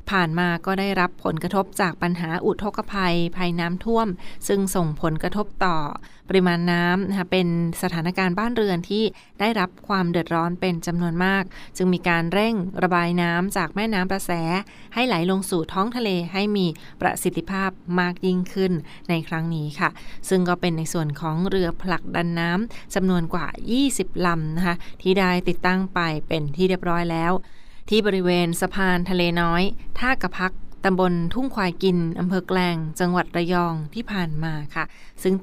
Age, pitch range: 20-39, 170-190 Hz